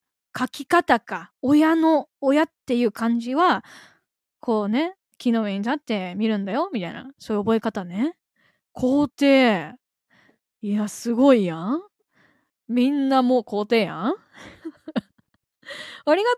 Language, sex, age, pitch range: Japanese, female, 10-29, 210-295 Hz